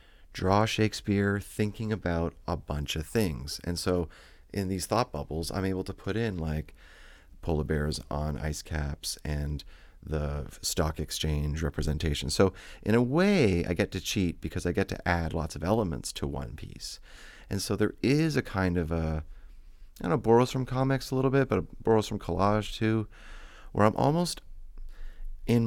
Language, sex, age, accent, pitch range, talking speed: English, male, 30-49, American, 80-110 Hz, 180 wpm